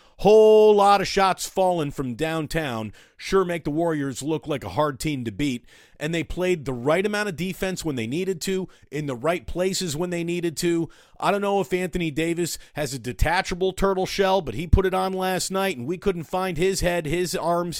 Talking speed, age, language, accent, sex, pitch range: 215 wpm, 40-59, English, American, male, 150-195 Hz